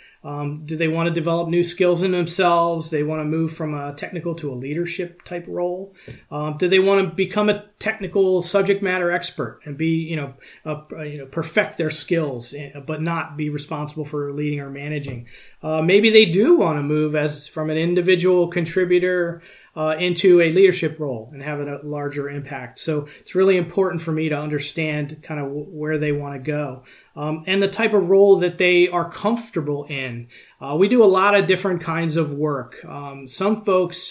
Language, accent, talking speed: English, American, 195 wpm